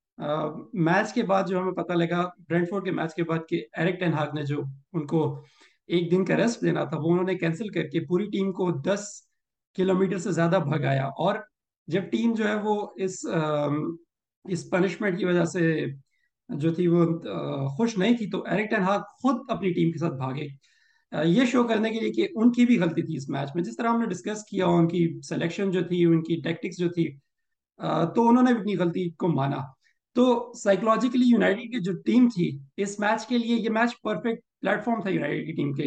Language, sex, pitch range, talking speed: Urdu, male, 165-210 Hz, 200 wpm